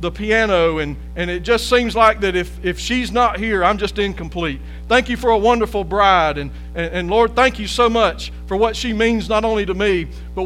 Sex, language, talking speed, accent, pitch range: male, English, 230 wpm, American, 180-235 Hz